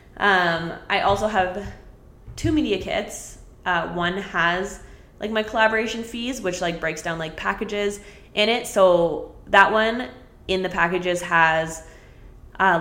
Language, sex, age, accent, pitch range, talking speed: English, female, 20-39, American, 170-200 Hz, 140 wpm